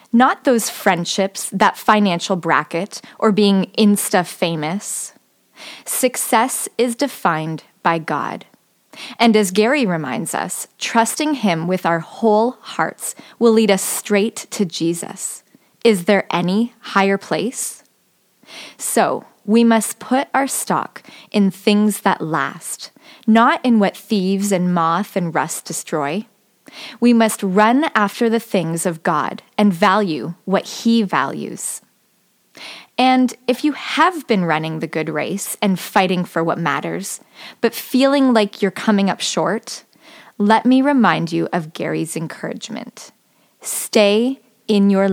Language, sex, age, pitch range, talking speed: English, female, 20-39, 185-235 Hz, 130 wpm